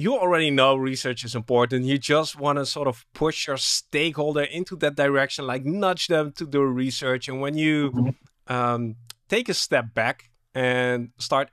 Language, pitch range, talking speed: English, 120-140 Hz, 175 wpm